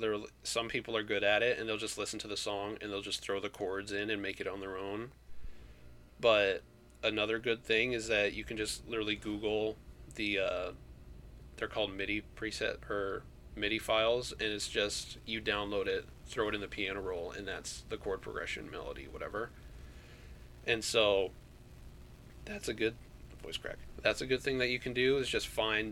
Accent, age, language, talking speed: American, 20-39, English, 190 wpm